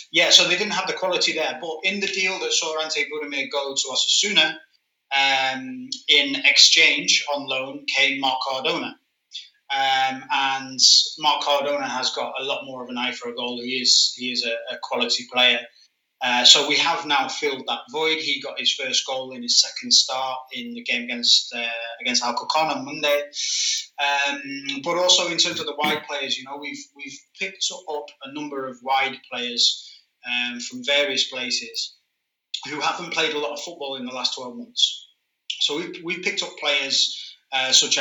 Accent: British